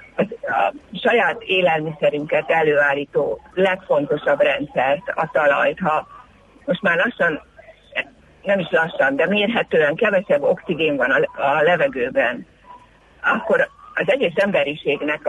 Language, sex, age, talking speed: Hungarian, female, 50-69, 100 wpm